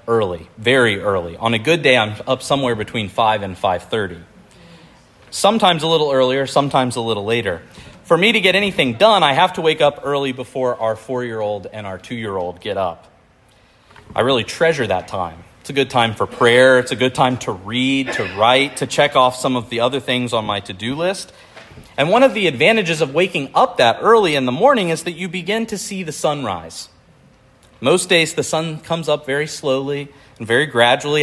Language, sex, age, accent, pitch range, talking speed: English, male, 40-59, American, 120-145 Hz, 200 wpm